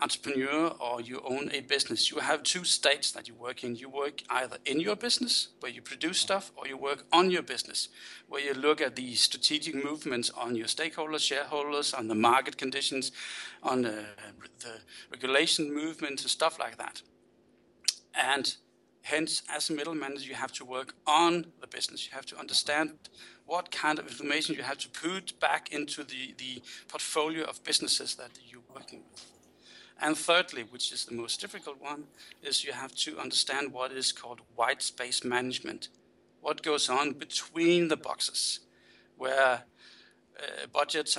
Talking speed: 170 wpm